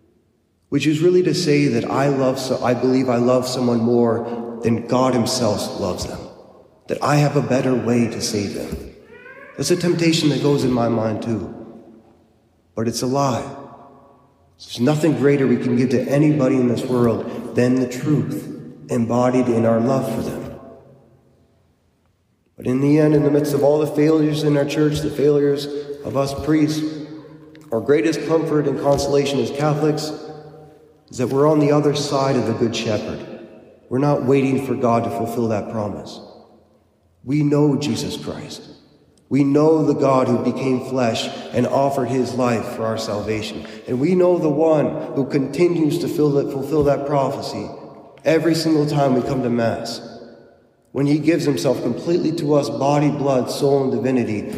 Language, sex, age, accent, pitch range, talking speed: English, male, 30-49, American, 120-145 Hz, 170 wpm